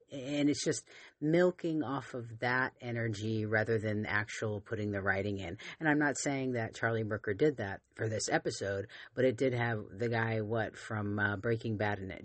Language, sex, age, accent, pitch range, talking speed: English, female, 40-59, American, 110-150 Hz, 195 wpm